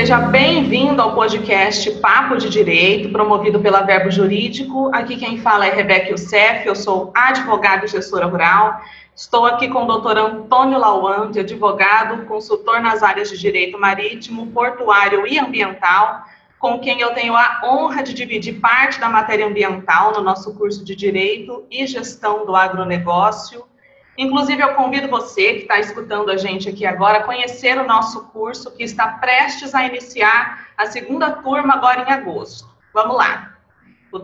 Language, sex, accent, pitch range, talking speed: Portuguese, female, Brazilian, 200-245 Hz, 160 wpm